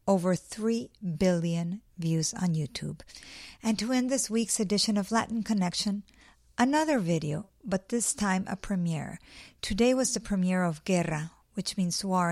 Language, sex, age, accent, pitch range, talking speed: English, female, 50-69, American, 170-215 Hz, 150 wpm